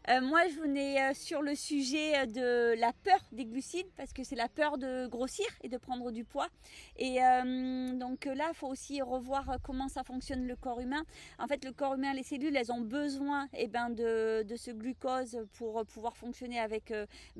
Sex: female